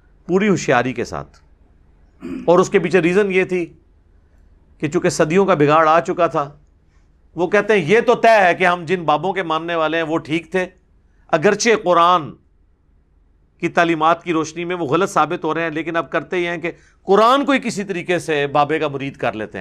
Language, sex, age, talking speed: Urdu, male, 50-69, 210 wpm